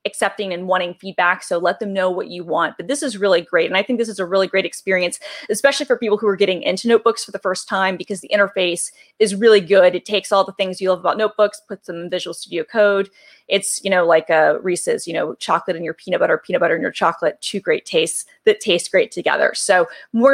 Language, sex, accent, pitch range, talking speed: English, female, American, 185-245 Hz, 250 wpm